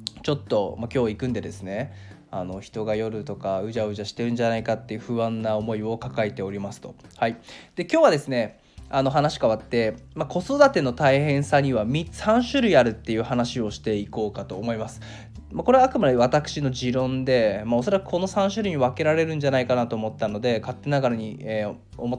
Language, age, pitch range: Japanese, 20-39, 110-160 Hz